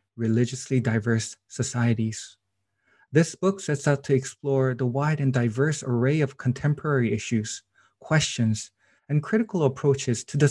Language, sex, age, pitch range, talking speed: English, male, 20-39, 115-140 Hz, 130 wpm